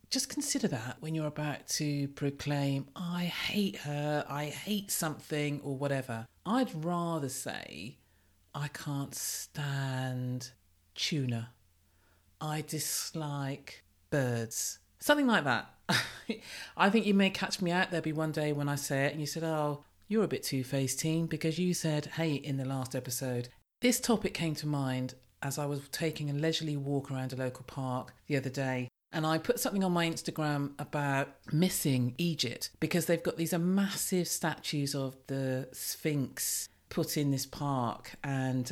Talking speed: 160 wpm